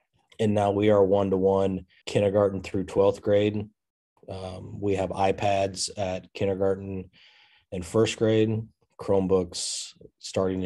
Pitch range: 90-100 Hz